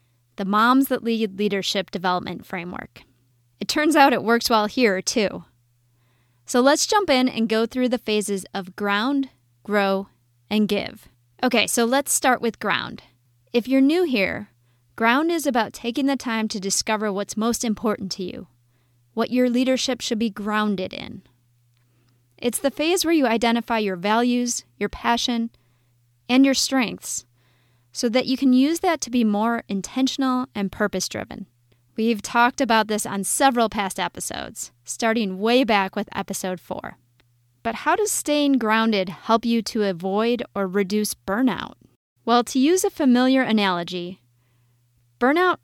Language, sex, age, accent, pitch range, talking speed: English, female, 20-39, American, 185-245 Hz, 155 wpm